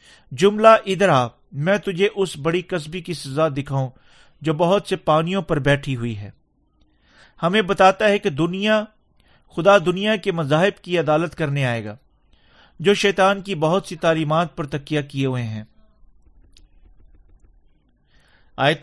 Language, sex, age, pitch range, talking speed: Urdu, male, 40-59, 140-195 Hz, 145 wpm